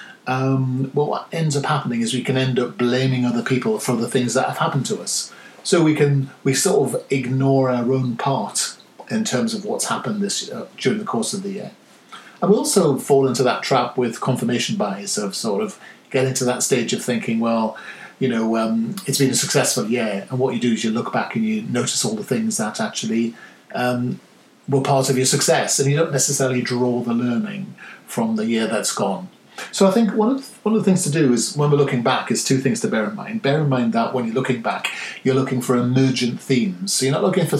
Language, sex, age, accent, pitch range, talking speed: English, male, 40-59, British, 125-195 Hz, 235 wpm